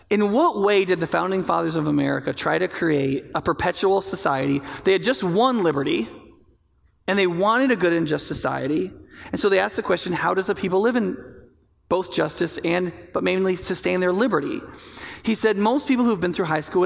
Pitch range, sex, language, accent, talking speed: 165-205 Hz, male, English, American, 205 wpm